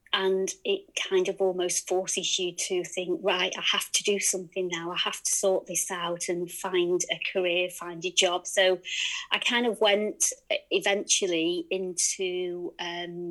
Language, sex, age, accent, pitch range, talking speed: English, female, 30-49, British, 180-225 Hz, 160 wpm